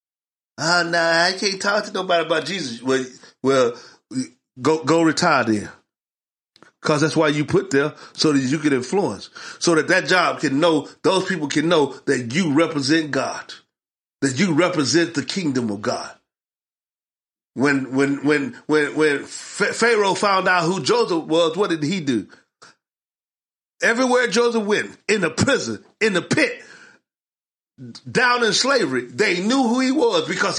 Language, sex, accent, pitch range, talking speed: English, male, American, 155-220 Hz, 155 wpm